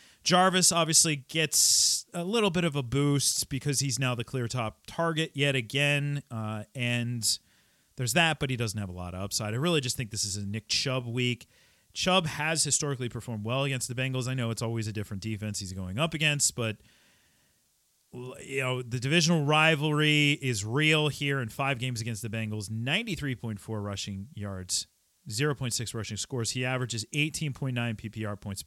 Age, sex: 30-49, male